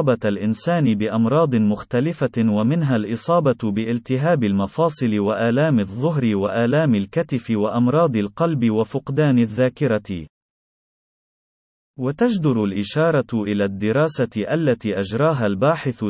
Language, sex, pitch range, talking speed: Arabic, male, 105-150 Hz, 85 wpm